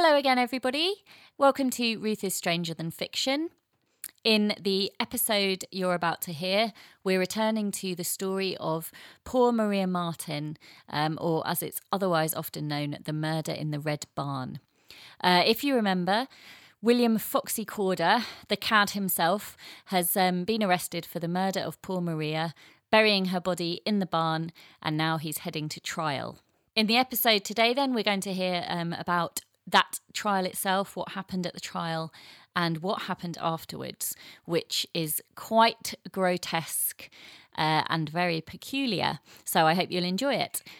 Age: 30-49